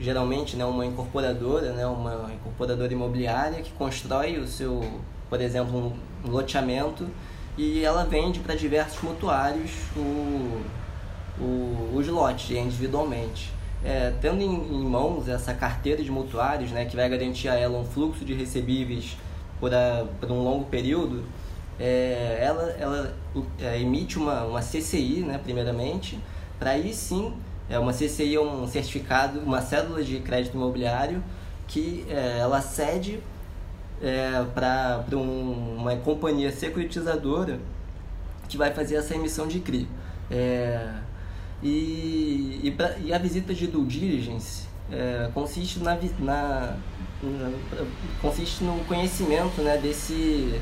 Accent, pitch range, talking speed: Brazilian, 105-145 Hz, 125 wpm